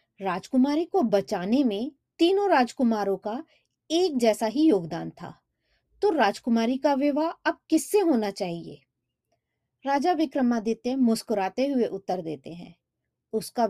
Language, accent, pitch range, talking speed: Hindi, native, 195-270 Hz, 125 wpm